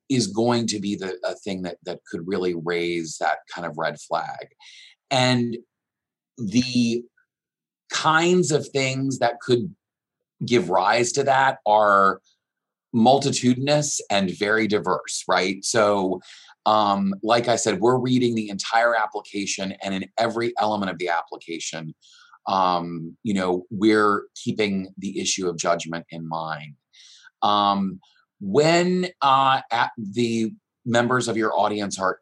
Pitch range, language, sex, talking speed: 95-120 Hz, English, male, 130 wpm